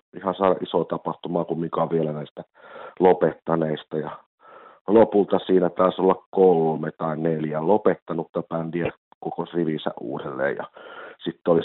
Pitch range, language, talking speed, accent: 80-95 Hz, Finnish, 130 wpm, native